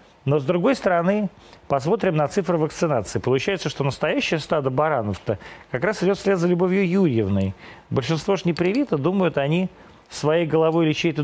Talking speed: 160 wpm